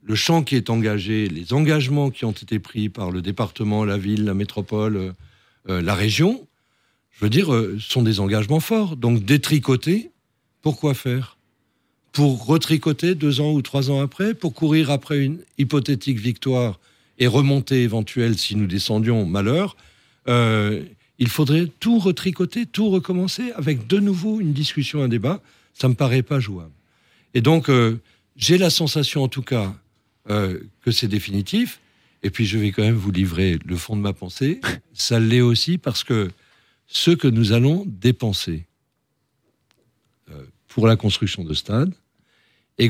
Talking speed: 160 wpm